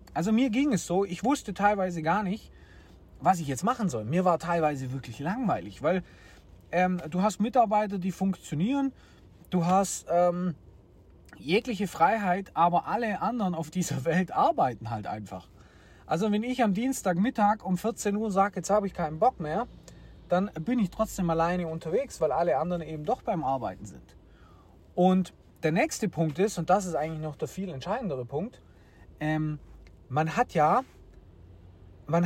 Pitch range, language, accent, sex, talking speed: 150-195 Hz, German, German, male, 165 wpm